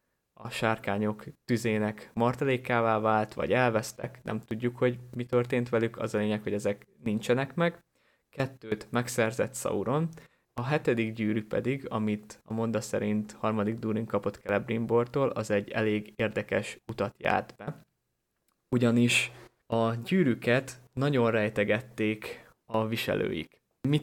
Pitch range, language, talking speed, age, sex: 110-125 Hz, Hungarian, 125 wpm, 20-39, male